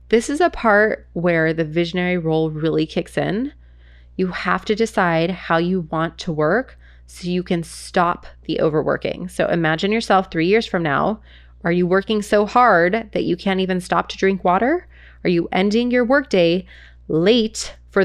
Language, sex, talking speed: English, female, 175 wpm